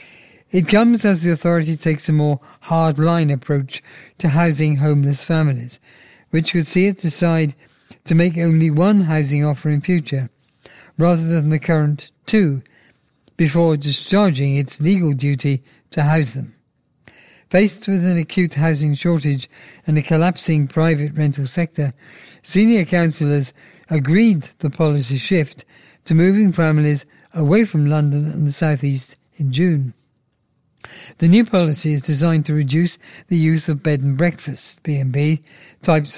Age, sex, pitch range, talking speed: 50-69, male, 145-170 Hz, 140 wpm